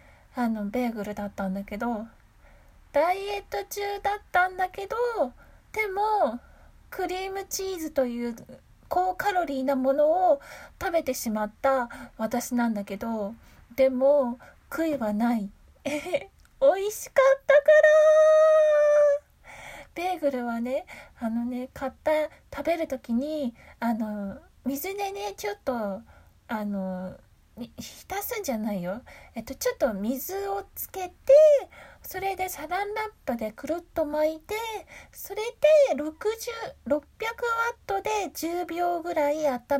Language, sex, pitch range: Japanese, female, 245-370 Hz